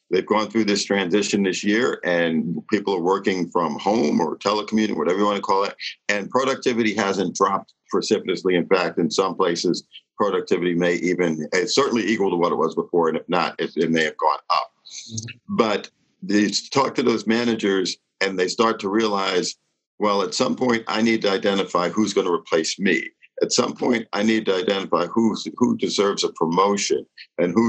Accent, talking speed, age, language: American, 190 wpm, 50-69, English